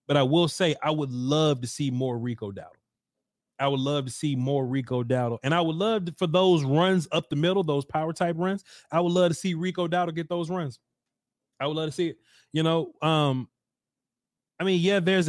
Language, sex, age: English, male, 30-49